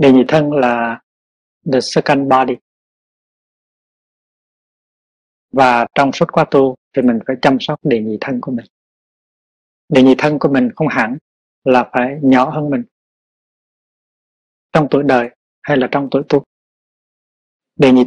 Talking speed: 145 wpm